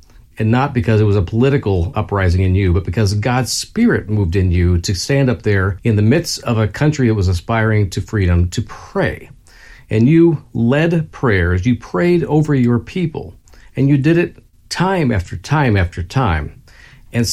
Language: English